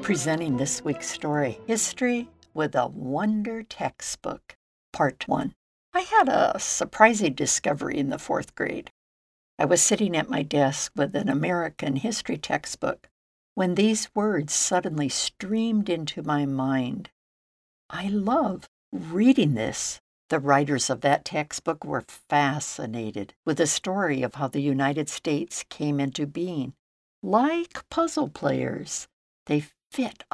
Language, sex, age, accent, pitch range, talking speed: English, female, 60-79, American, 140-210 Hz, 130 wpm